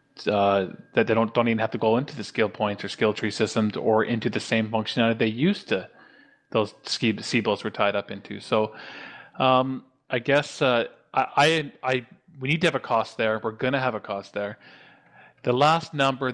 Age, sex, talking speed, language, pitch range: 20-39, male, 205 wpm, English, 110-130 Hz